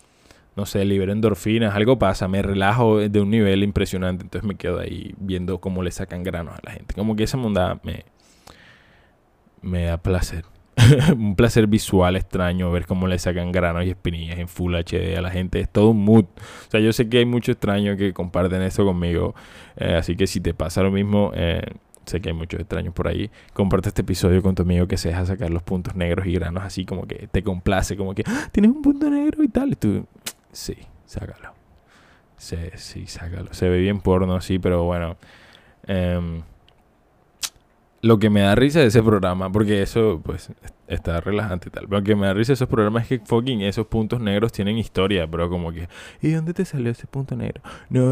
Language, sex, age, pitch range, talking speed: Spanish, male, 20-39, 90-110 Hz, 210 wpm